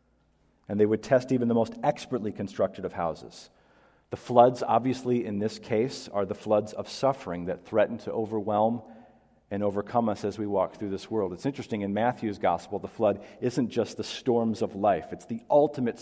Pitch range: 105-125 Hz